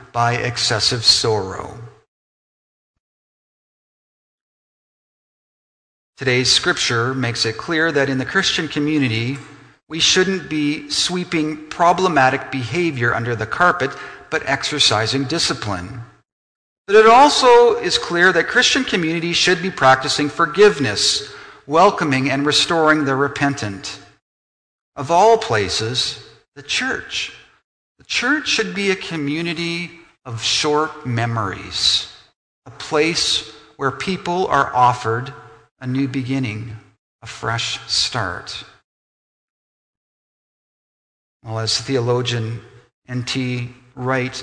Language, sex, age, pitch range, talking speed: English, male, 50-69, 120-170 Hz, 100 wpm